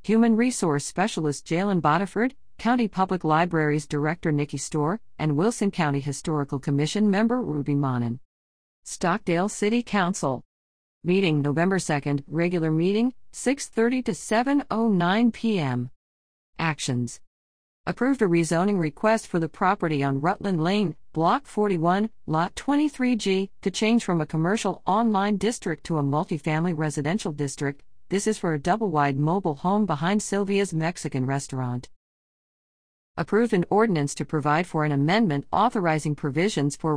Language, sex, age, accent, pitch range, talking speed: English, female, 50-69, American, 145-200 Hz, 130 wpm